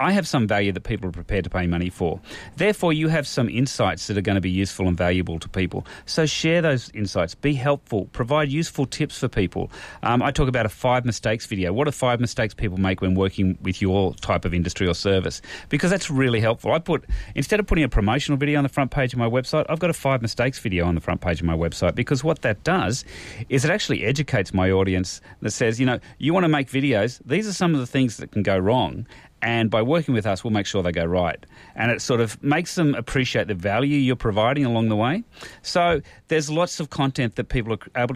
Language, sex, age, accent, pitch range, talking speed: English, male, 30-49, Australian, 95-135 Hz, 240 wpm